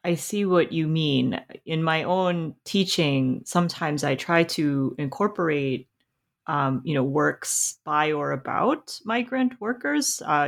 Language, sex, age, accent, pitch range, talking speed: English, female, 30-49, American, 130-170 Hz, 135 wpm